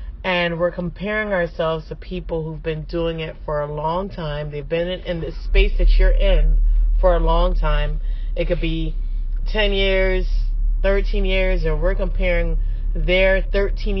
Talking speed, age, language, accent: 165 wpm, 30-49, English, American